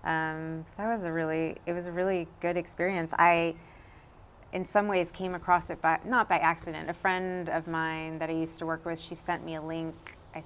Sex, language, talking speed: female, English, 220 wpm